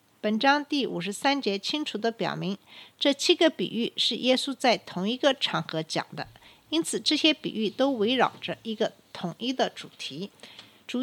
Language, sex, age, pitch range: Chinese, female, 50-69, 190-270 Hz